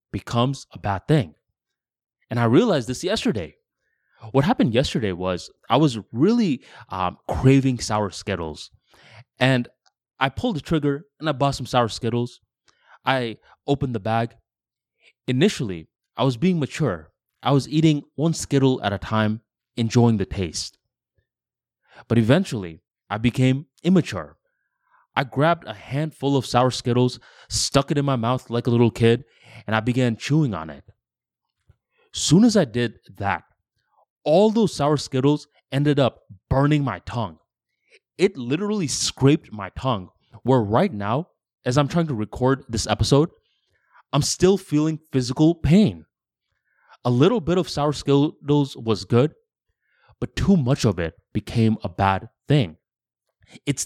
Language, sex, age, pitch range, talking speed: English, male, 20-39, 110-145 Hz, 145 wpm